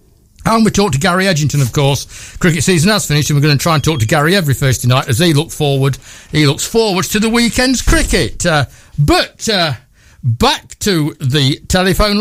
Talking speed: 210 wpm